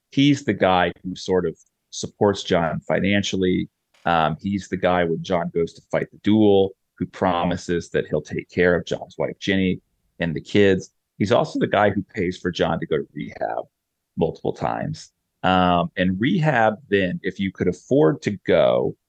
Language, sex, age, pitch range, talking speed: English, male, 30-49, 90-100 Hz, 180 wpm